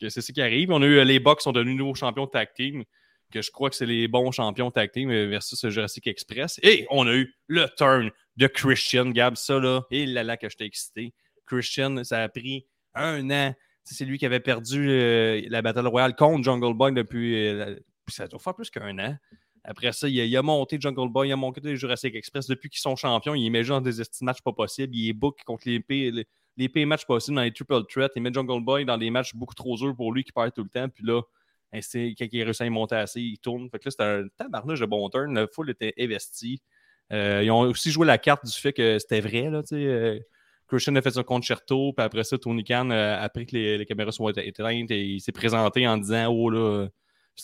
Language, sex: French, male